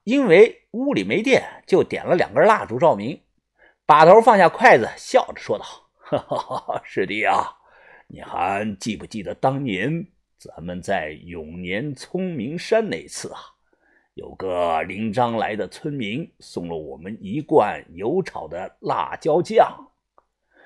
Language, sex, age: Chinese, male, 50-69